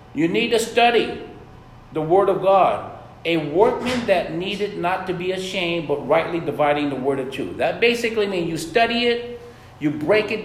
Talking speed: 185 wpm